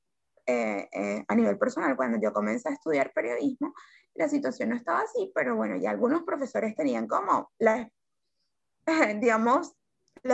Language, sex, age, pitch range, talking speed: Spanish, female, 20-39, 220-295 Hz, 155 wpm